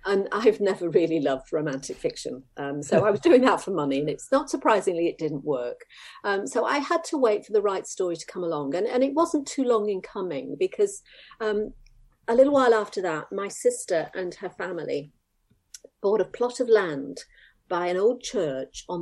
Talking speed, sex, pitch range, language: 205 wpm, female, 165-260 Hz, English